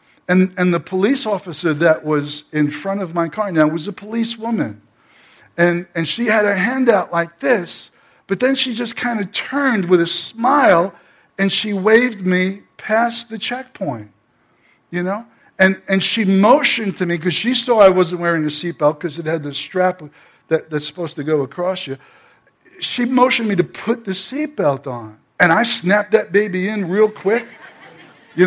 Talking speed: 185 wpm